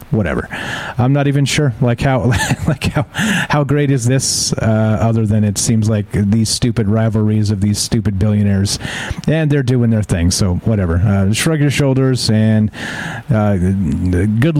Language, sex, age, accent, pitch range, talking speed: English, male, 40-59, American, 105-135 Hz, 165 wpm